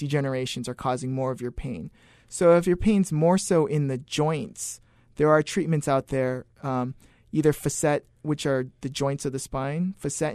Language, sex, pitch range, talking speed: English, male, 135-160 Hz, 185 wpm